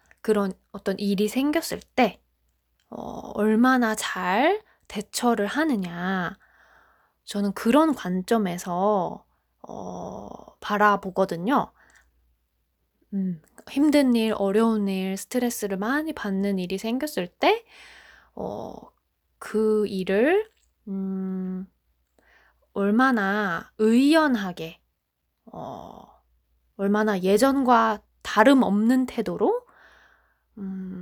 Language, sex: Korean, female